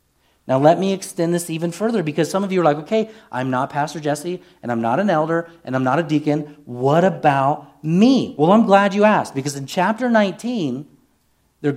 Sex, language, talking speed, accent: male, English, 210 wpm, American